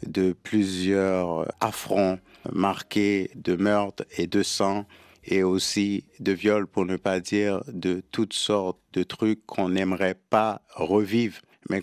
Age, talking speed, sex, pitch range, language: 50-69, 135 wpm, male, 100-115 Hz, French